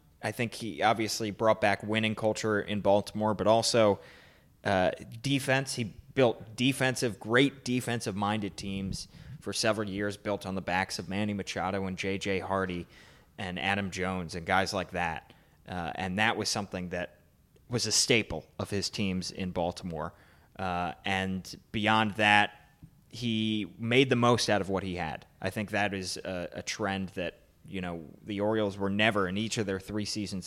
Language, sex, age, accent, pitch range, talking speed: English, male, 20-39, American, 95-110 Hz, 170 wpm